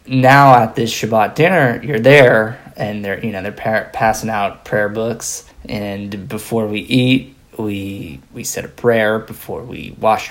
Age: 20-39